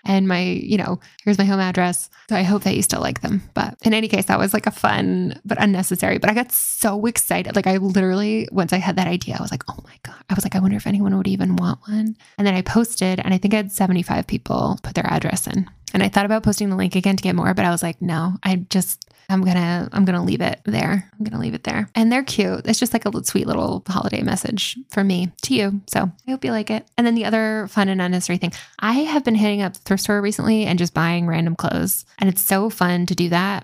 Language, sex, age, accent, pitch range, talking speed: English, female, 10-29, American, 180-215 Hz, 275 wpm